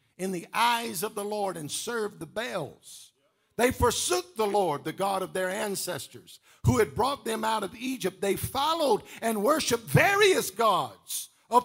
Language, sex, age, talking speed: English, male, 50-69, 170 wpm